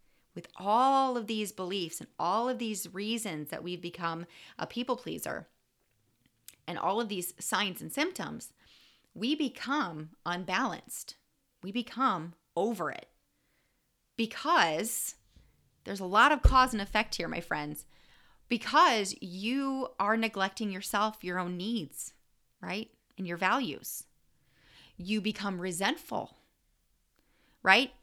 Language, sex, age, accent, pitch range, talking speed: English, female, 30-49, American, 180-235 Hz, 125 wpm